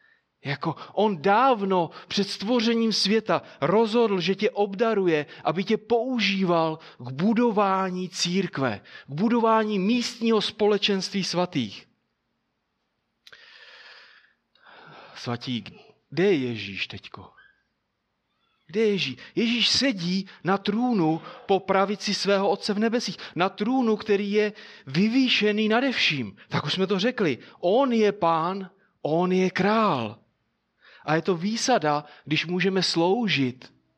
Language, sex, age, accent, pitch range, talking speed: Czech, male, 30-49, native, 150-210 Hz, 110 wpm